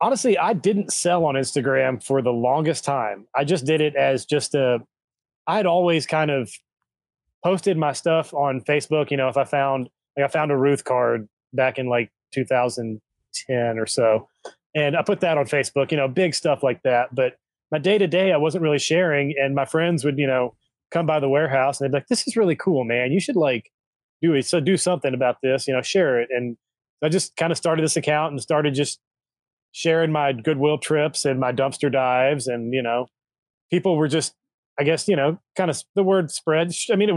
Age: 20-39